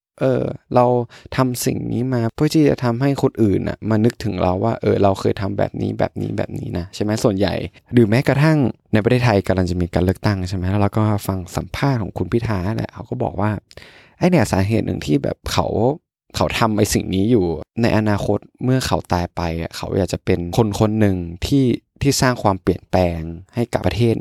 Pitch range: 95-125 Hz